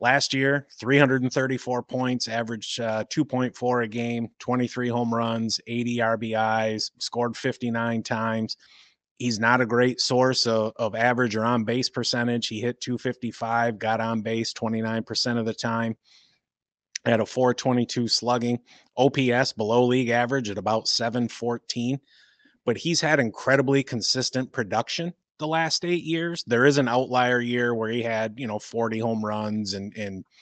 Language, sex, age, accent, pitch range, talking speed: English, male, 30-49, American, 115-130 Hz, 145 wpm